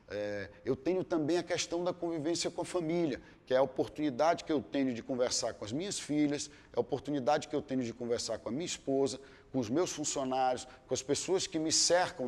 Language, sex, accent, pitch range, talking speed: Portuguese, male, Brazilian, 125-175 Hz, 220 wpm